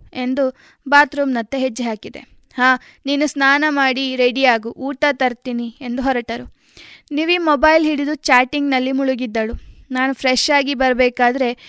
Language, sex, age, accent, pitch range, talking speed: Kannada, female, 20-39, native, 245-280 Hz, 115 wpm